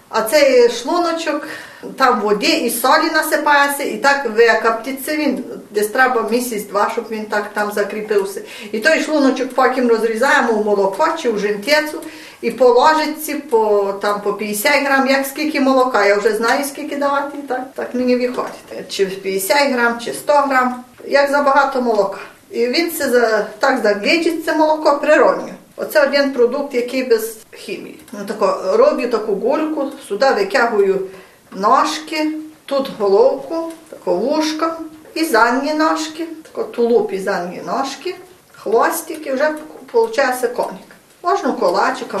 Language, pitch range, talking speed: Ukrainian, 225-310 Hz, 140 wpm